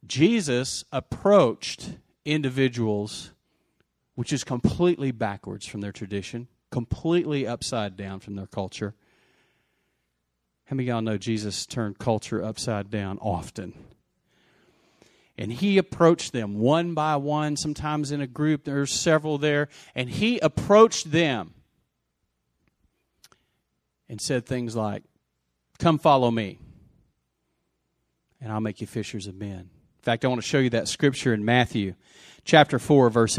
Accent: American